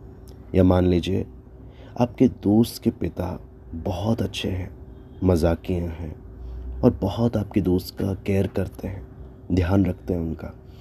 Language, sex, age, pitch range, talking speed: Hindi, male, 30-49, 90-115 Hz, 135 wpm